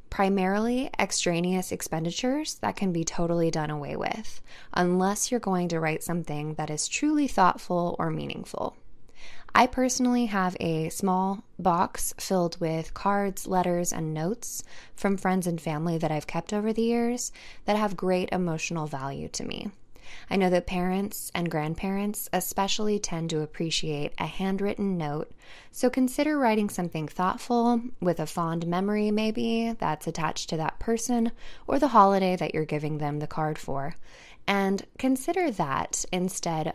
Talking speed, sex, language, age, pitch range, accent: 150 wpm, female, English, 20-39, 165-215 Hz, American